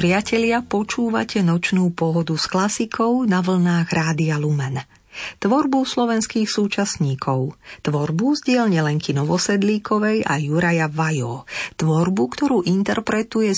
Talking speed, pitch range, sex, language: 100 wpm, 155-210 Hz, female, Slovak